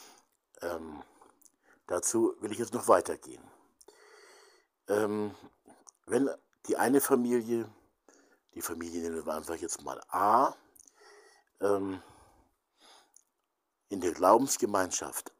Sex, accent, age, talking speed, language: male, German, 60-79, 95 wpm, German